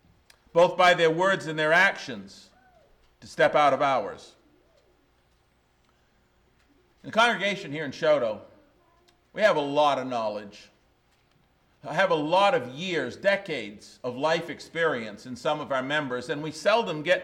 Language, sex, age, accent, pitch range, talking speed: English, male, 50-69, American, 130-190 Hz, 150 wpm